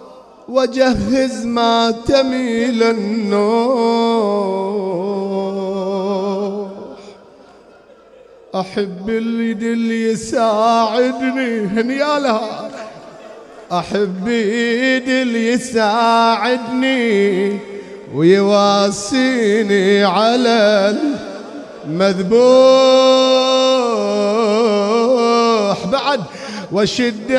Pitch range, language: 200-260 Hz, Arabic